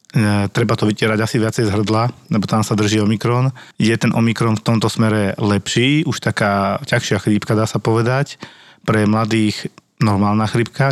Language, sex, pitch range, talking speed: Slovak, male, 105-120 Hz, 165 wpm